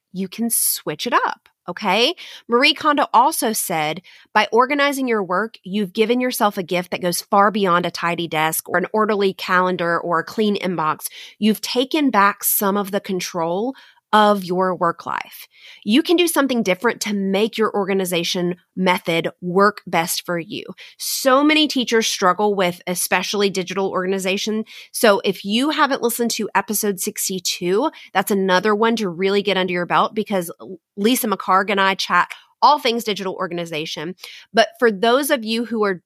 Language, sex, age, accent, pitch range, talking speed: English, female, 30-49, American, 180-230 Hz, 170 wpm